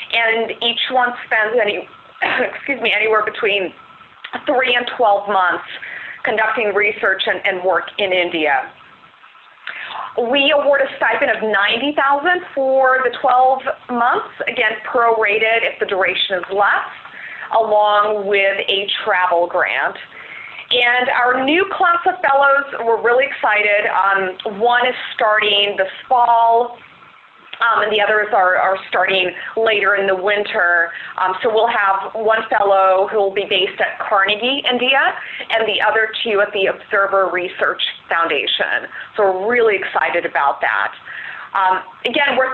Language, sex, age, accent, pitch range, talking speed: English, female, 30-49, American, 195-245 Hz, 140 wpm